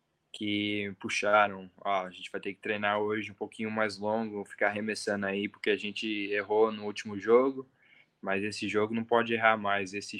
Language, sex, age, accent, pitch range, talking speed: Portuguese, male, 10-29, Brazilian, 100-110 Hz, 190 wpm